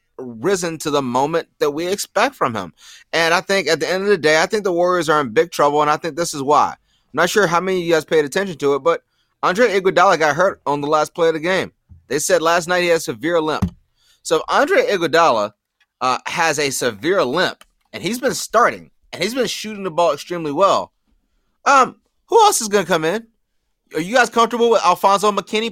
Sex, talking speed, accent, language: male, 230 wpm, American, English